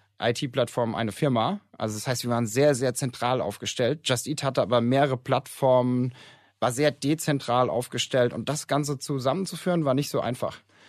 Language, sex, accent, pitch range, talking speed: German, male, German, 120-140 Hz, 170 wpm